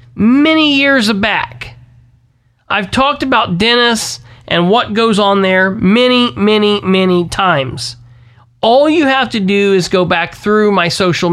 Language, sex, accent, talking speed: English, male, American, 145 wpm